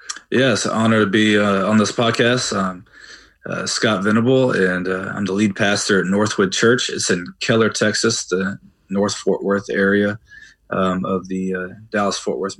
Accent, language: American, English